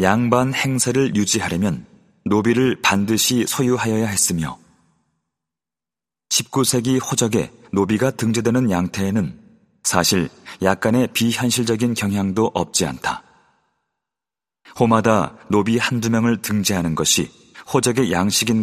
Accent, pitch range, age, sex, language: native, 100-125 Hz, 30-49, male, Korean